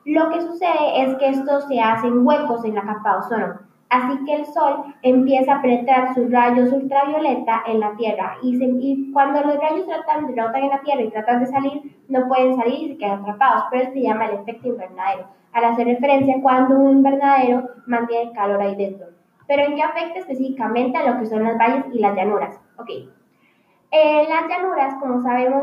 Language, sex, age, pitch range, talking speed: Spanish, female, 10-29, 230-280 Hz, 200 wpm